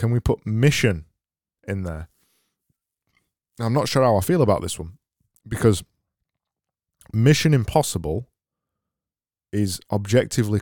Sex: male